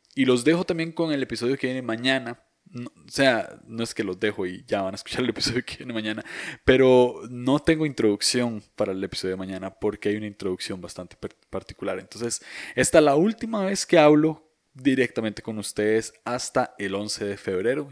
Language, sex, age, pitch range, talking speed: Spanish, male, 20-39, 100-130 Hz, 200 wpm